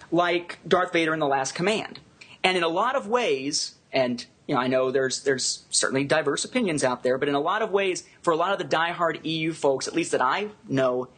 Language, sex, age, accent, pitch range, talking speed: English, male, 30-49, American, 140-185 Hz, 235 wpm